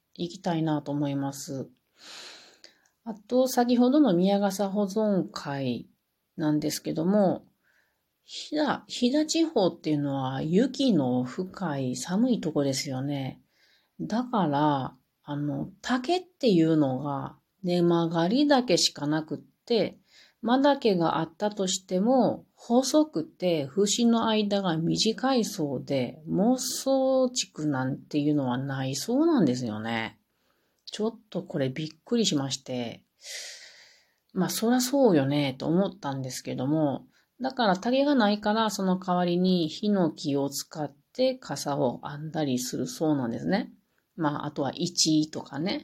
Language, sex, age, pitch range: Japanese, female, 40-59, 145-225 Hz